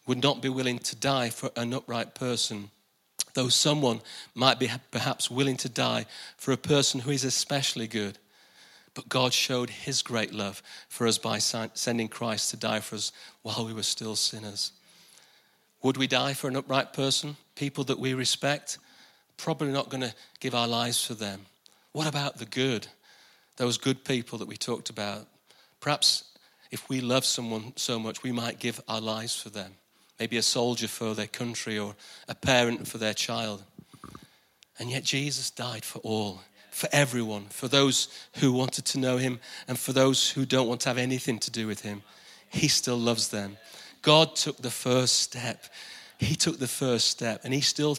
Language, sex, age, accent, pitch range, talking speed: English, male, 40-59, British, 115-135 Hz, 185 wpm